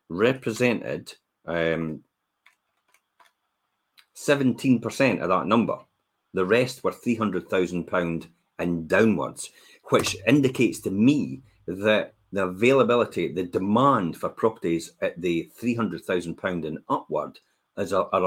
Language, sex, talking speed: English, male, 95 wpm